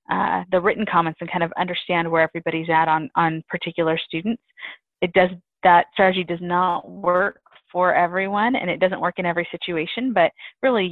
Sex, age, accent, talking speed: female, 20-39, American, 180 wpm